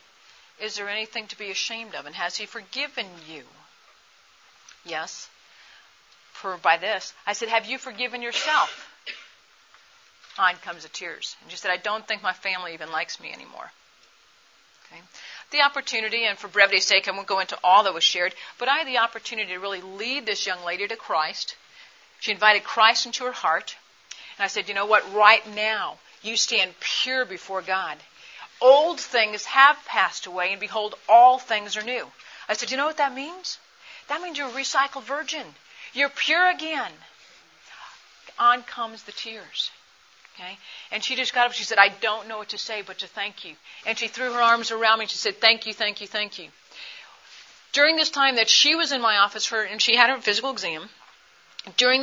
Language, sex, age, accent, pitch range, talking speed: English, female, 50-69, American, 205-260 Hz, 195 wpm